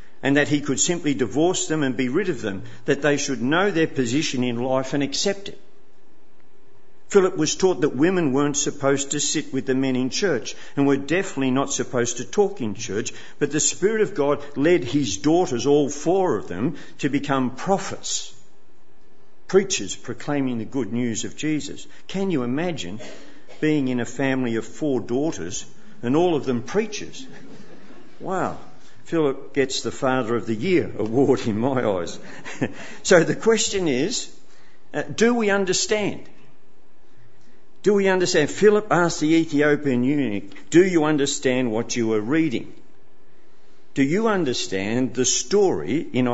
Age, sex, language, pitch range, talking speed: 50-69, male, English, 125-160 Hz, 160 wpm